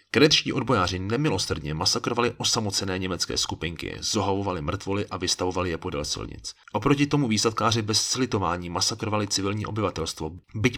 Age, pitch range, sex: 30-49, 95-120 Hz, male